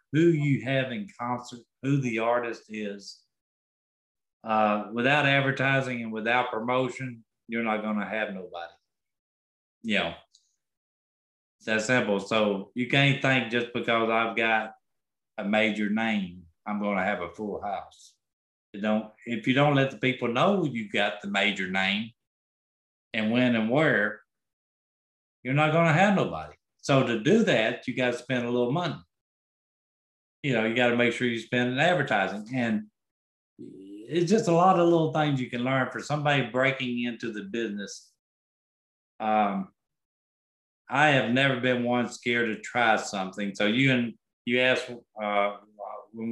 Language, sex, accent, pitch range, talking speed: English, male, American, 100-125 Hz, 160 wpm